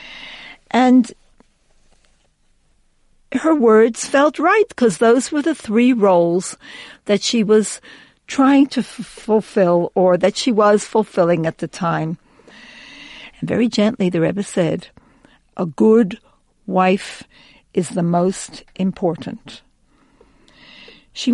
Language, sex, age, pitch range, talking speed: English, female, 60-79, 190-250 Hz, 110 wpm